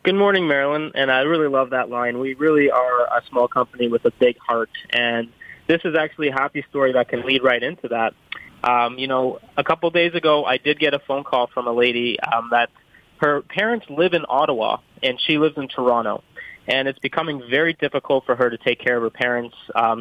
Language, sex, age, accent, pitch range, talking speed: English, male, 20-39, American, 120-145 Hz, 220 wpm